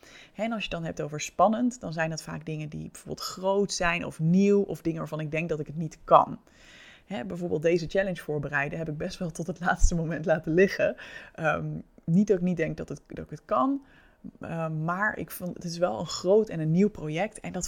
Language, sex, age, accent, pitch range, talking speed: Dutch, female, 20-39, Dutch, 160-190 Hz, 220 wpm